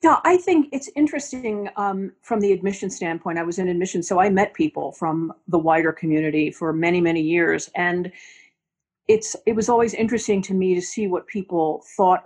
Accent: American